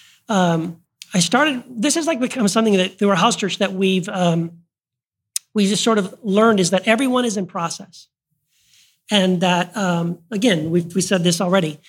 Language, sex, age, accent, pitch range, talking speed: English, male, 40-59, American, 185-230 Hz, 180 wpm